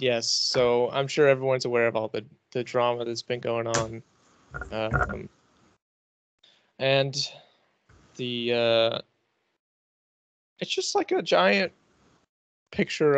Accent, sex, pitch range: American, male, 115-140 Hz